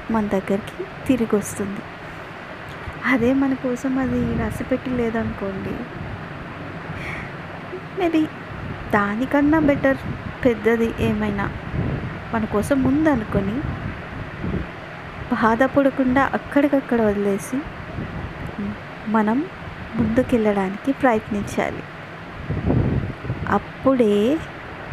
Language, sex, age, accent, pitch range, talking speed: Telugu, female, 20-39, native, 215-265 Hz, 60 wpm